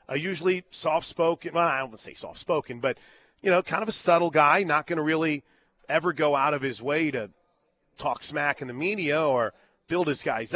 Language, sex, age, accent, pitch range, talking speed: English, male, 30-49, American, 150-185 Hz, 210 wpm